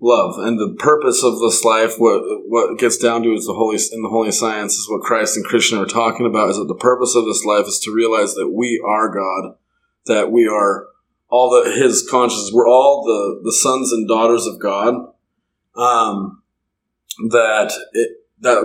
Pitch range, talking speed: 115-130 Hz, 200 wpm